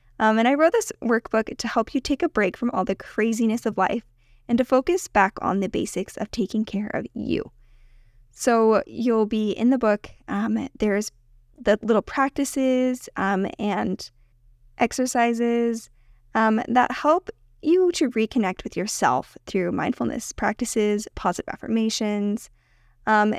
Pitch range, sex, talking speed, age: 195-240 Hz, female, 150 wpm, 10-29